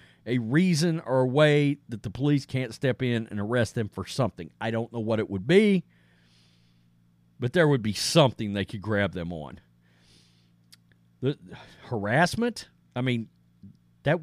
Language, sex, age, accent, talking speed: English, male, 40-59, American, 165 wpm